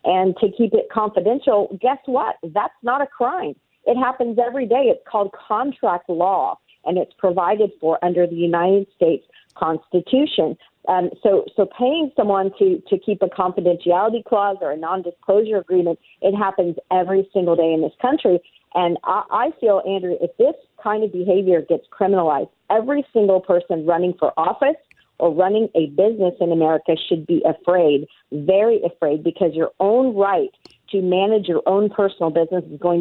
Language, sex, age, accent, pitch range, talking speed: English, female, 50-69, American, 170-220 Hz, 165 wpm